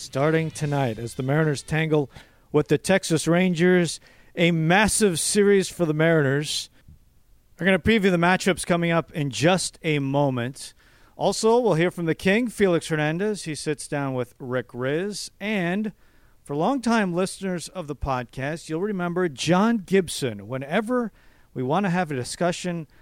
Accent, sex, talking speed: American, male, 155 wpm